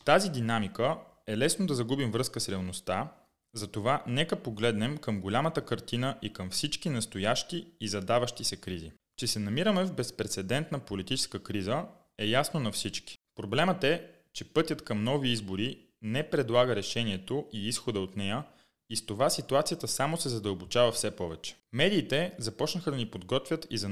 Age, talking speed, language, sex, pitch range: 20-39, 160 wpm, Bulgarian, male, 105-145 Hz